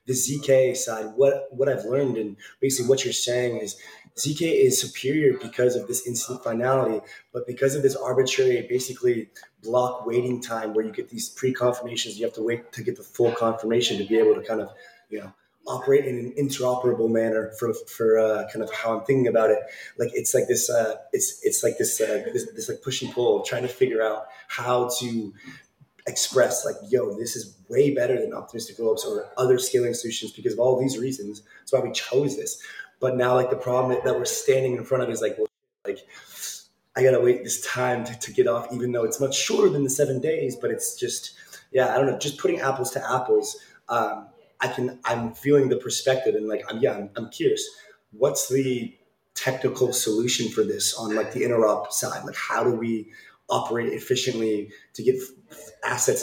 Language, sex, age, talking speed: English, male, 20-39, 210 wpm